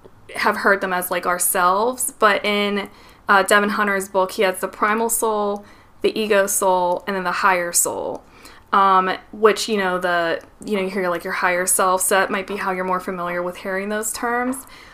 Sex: female